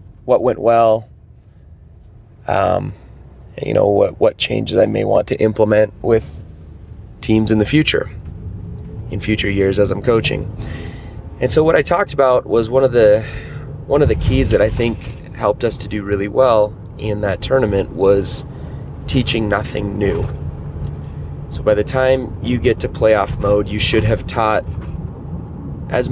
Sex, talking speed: male, 160 wpm